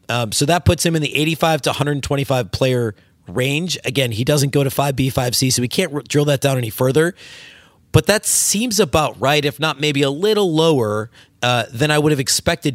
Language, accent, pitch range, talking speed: English, American, 125-150 Hz, 205 wpm